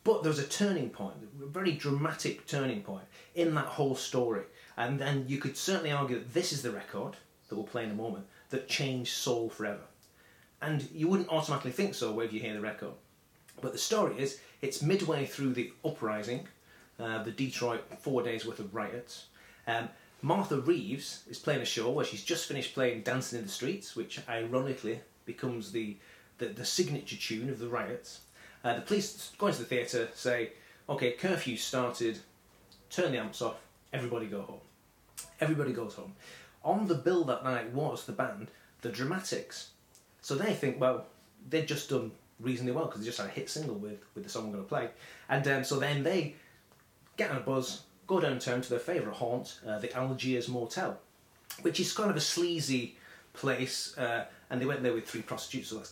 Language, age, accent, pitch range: English, 30-49, British, 115-150 Hz